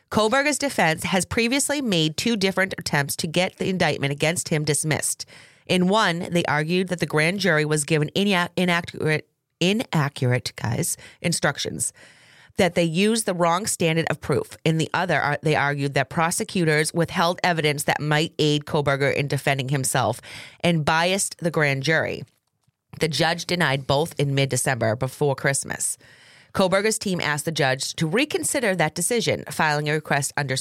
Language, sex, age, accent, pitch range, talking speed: English, female, 30-49, American, 145-180 Hz, 160 wpm